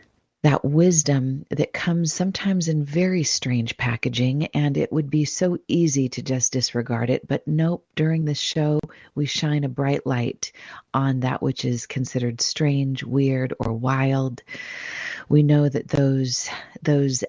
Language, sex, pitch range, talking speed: English, female, 125-155 Hz, 150 wpm